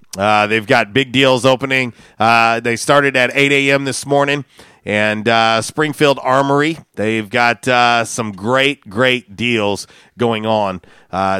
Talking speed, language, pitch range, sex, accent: 145 wpm, English, 110-135 Hz, male, American